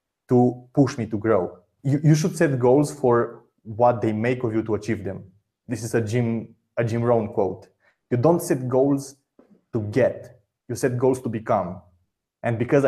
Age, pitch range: 20-39, 115-140 Hz